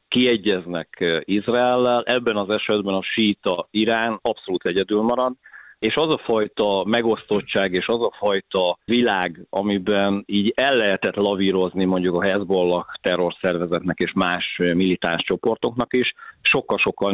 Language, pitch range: Hungarian, 90-110 Hz